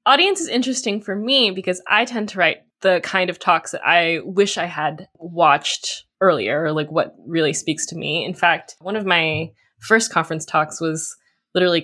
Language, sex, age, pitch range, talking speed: English, female, 10-29, 150-190 Hz, 190 wpm